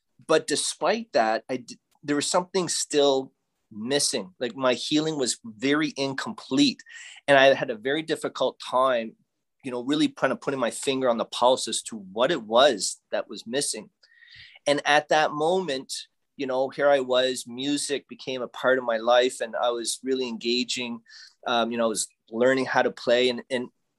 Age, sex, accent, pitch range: 30-49, male, American, 125-165 Hz